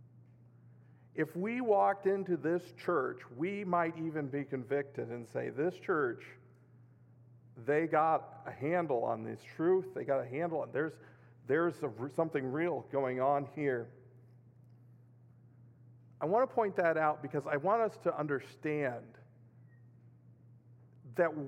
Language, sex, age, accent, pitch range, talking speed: English, male, 50-69, American, 120-165 Hz, 135 wpm